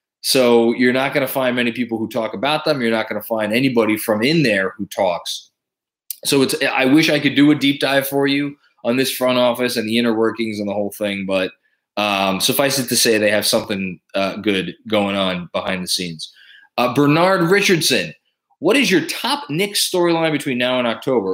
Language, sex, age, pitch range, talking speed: English, male, 20-39, 110-150 Hz, 215 wpm